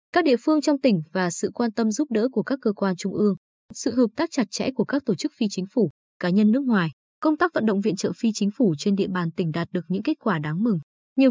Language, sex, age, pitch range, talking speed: Vietnamese, female, 20-39, 185-240 Hz, 285 wpm